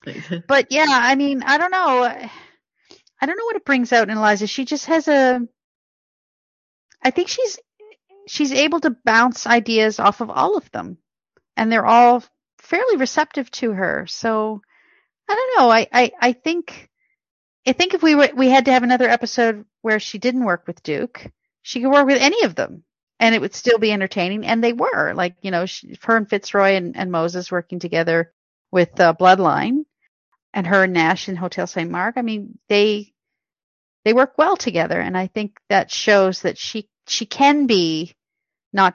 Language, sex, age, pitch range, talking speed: English, female, 40-59, 190-270 Hz, 190 wpm